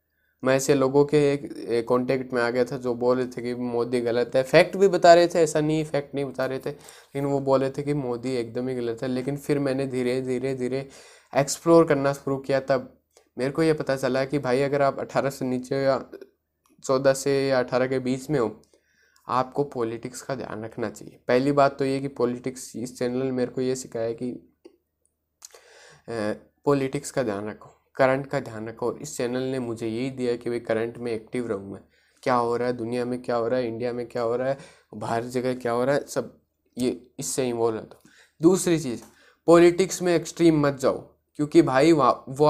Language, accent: Hindi, native